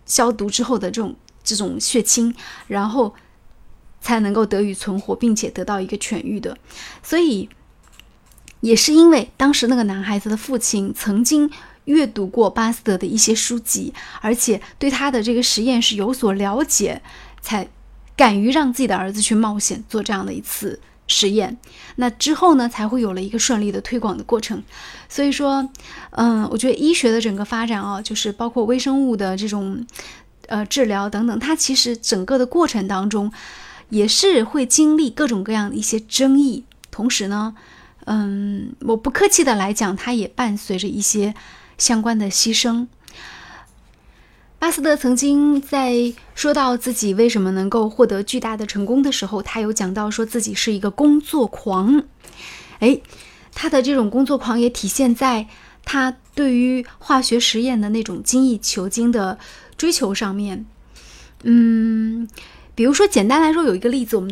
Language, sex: Chinese, female